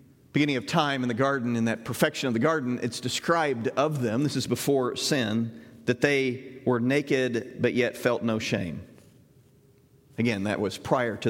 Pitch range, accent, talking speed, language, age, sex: 120-155 Hz, American, 180 wpm, English, 40-59, male